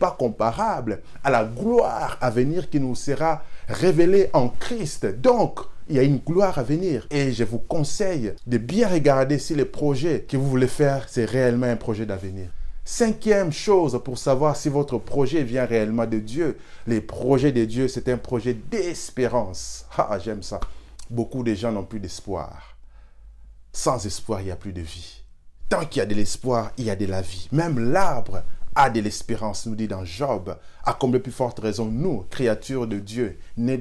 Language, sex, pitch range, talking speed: French, male, 100-135 Hz, 190 wpm